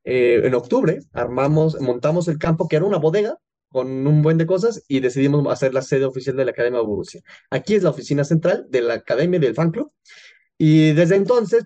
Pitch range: 130-165 Hz